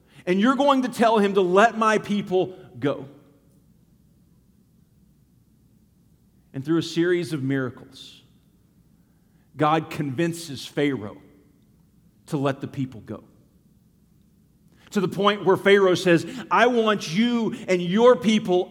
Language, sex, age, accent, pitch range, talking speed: English, male, 40-59, American, 145-195 Hz, 120 wpm